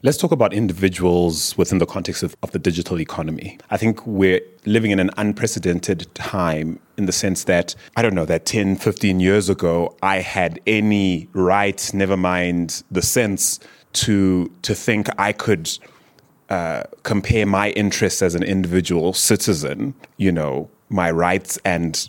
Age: 30-49